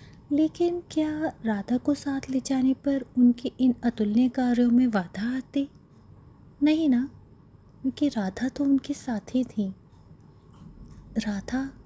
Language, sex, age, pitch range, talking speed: Hindi, female, 20-39, 210-260 Hz, 125 wpm